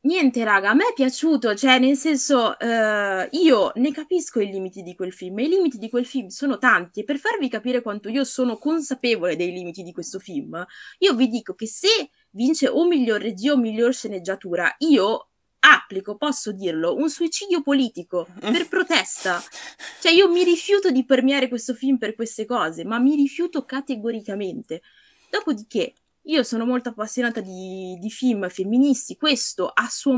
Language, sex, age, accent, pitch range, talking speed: Italian, female, 20-39, native, 200-290 Hz, 175 wpm